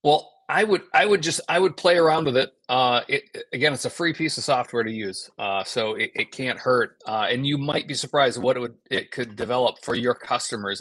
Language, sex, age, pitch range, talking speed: English, male, 40-59, 120-145 Hz, 245 wpm